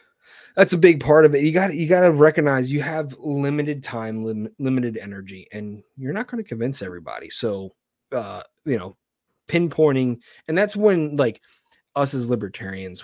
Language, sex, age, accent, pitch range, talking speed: English, male, 30-49, American, 115-155 Hz, 175 wpm